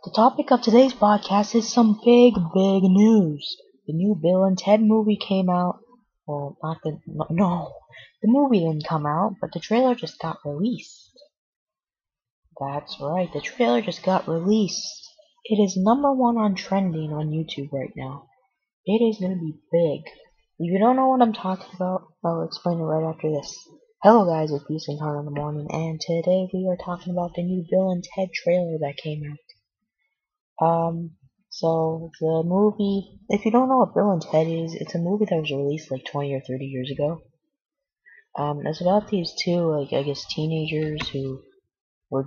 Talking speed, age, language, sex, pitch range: 185 wpm, 20-39, English, female, 155-210 Hz